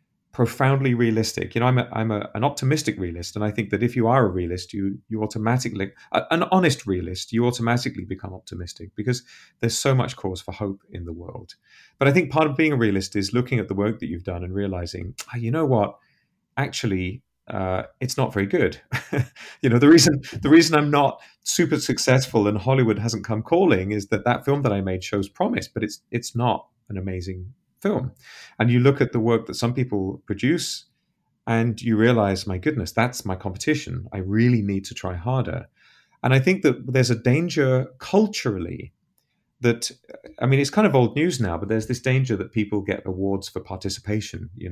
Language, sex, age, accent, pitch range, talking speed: English, male, 30-49, British, 100-125 Hz, 205 wpm